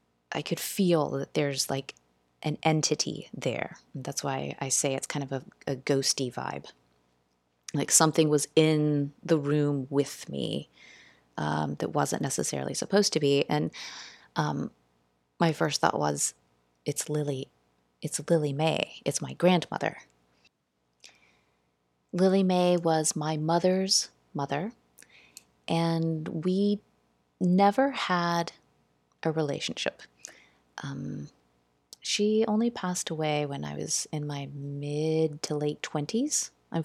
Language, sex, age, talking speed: English, female, 30-49, 125 wpm